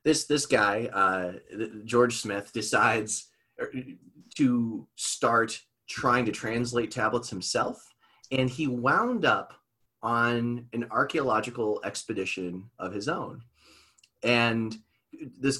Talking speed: 105 wpm